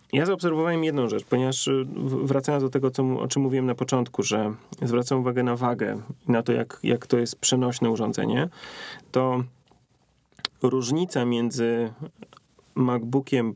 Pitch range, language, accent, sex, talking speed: 120-135 Hz, Polish, native, male, 135 wpm